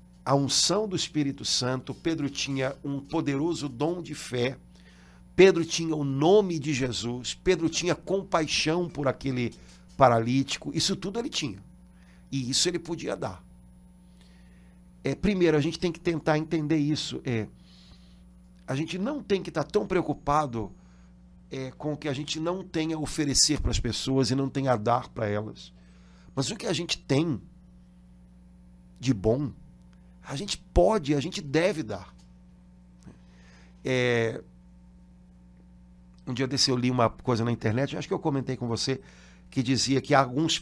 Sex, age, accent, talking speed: male, 60-79, Brazilian, 150 wpm